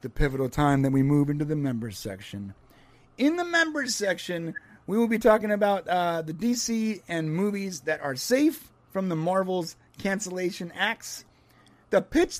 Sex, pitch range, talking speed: male, 145-200 Hz, 165 wpm